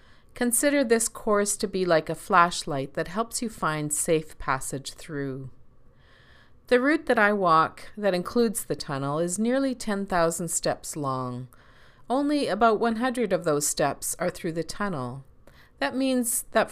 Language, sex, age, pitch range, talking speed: English, female, 40-59, 150-210 Hz, 150 wpm